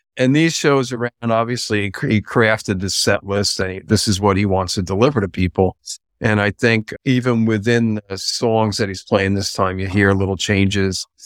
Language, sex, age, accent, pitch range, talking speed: English, male, 50-69, American, 95-115 Hz, 195 wpm